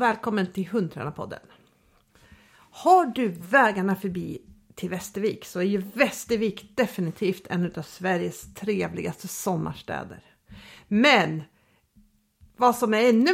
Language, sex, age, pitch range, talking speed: Swedish, female, 50-69, 185-230 Hz, 110 wpm